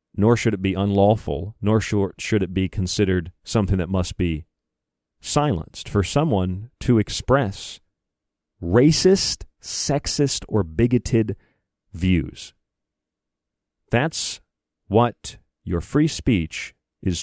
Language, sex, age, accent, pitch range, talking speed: English, male, 40-59, American, 80-120 Hz, 105 wpm